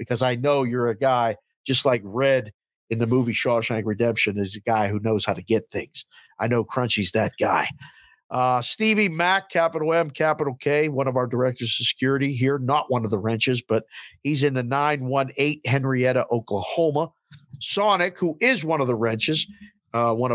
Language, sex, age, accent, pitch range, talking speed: English, male, 50-69, American, 120-180 Hz, 190 wpm